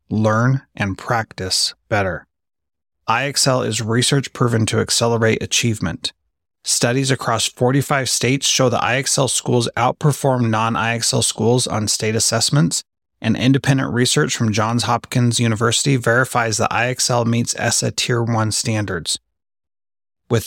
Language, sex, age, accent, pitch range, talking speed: English, male, 30-49, American, 110-125 Hz, 125 wpm